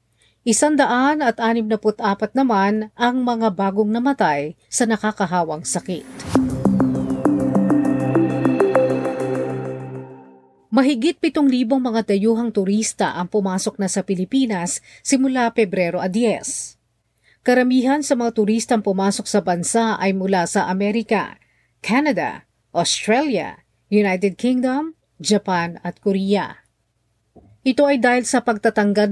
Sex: female